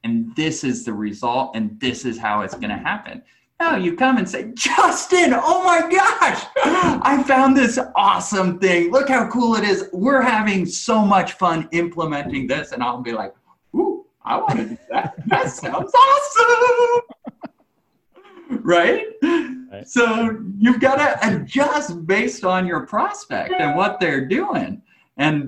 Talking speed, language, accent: 160 wpm, English, American